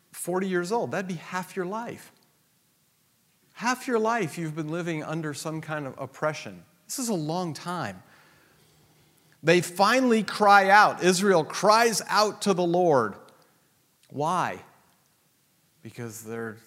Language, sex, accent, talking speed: English, male, American, 130 wpm